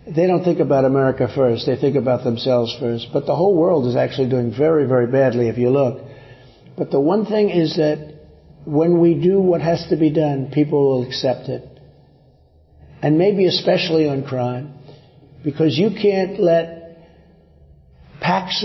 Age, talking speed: 50-69, 165 wpm